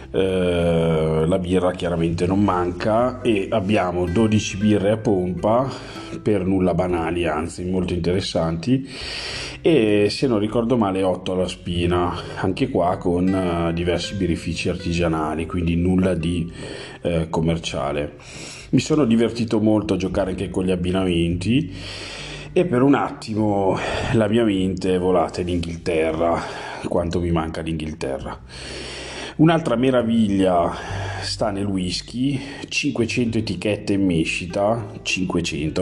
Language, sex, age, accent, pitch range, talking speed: Italian, male, 30-49, native, 80-105 Hz, 120 wpm